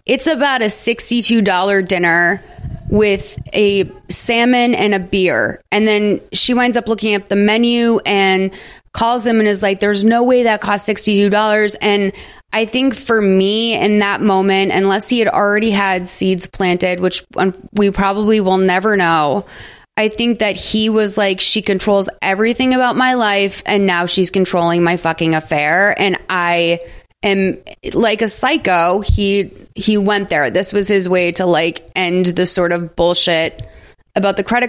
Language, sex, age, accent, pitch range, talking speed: English, female, 20-39, American, 180-215 Hz, 165 wpm